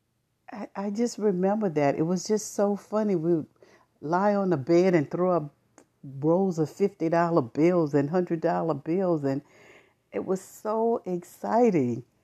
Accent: American